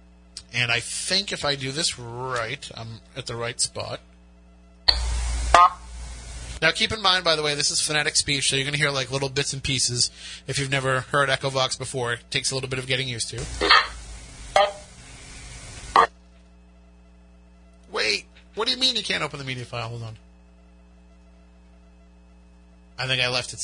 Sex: male